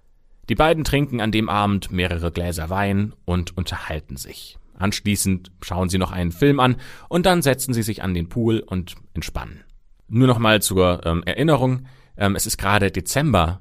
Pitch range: 90-110 Hz